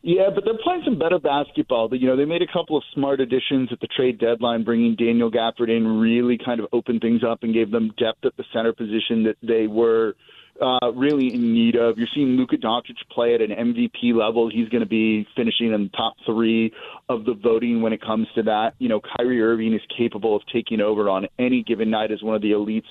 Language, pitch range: English, 115-135 Hz